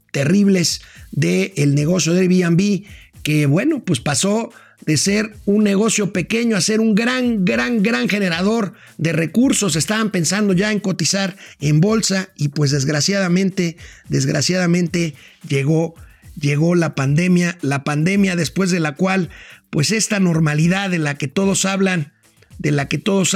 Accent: Mexican